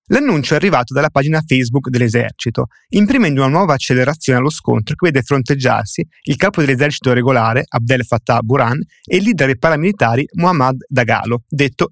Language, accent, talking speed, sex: Italian, native, 155 wpm, male